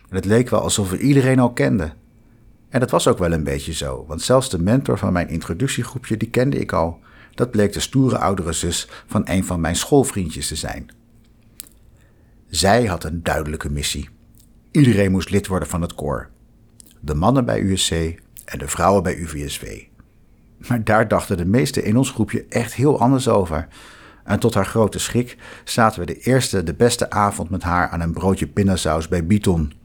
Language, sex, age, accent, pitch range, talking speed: Dutch, male, 60-79, Dutch, 85-115 Hz, 190 wpm